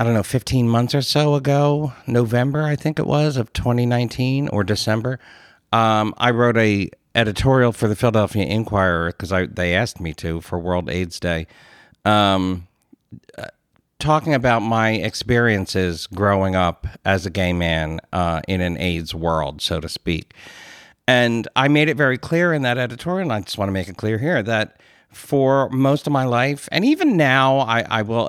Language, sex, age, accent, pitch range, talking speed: English, male, 50-69, American, 95-125 Hz, 180 wpm